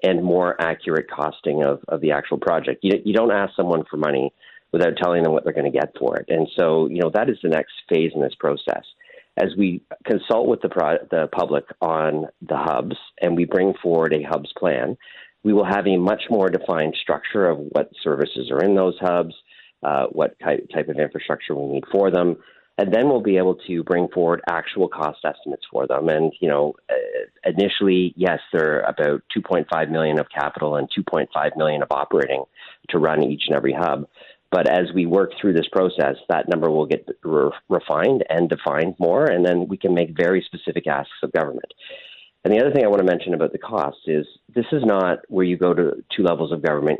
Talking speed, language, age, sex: 210 wpm, English, 40-59, male